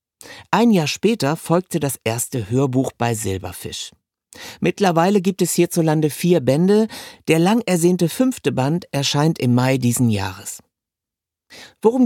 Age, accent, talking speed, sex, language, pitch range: 50-69, German, 130 wpm, male, German, 125-180 Hz